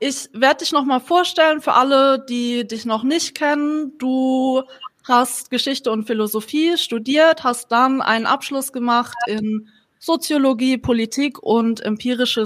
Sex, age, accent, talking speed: female, 20-39, German, 140 wpm